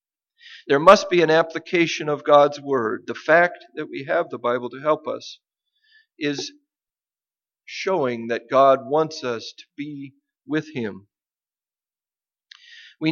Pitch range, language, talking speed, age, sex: 130-175 Hz, English, 135 wpm, 50-69, male